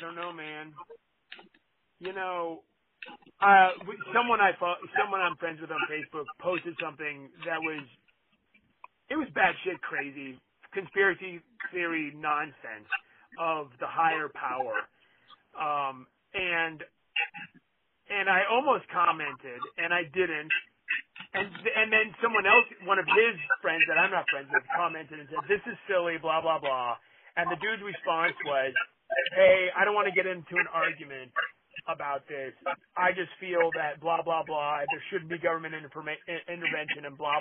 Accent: American